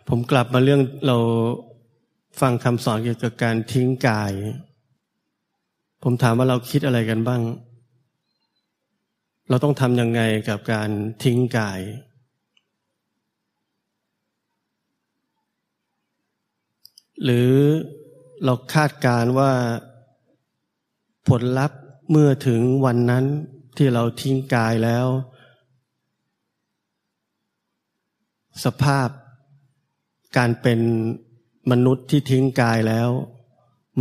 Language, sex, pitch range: Thai, male, 120-135 Hz